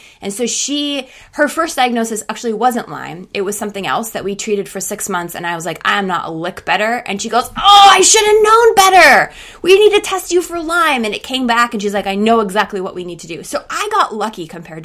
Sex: female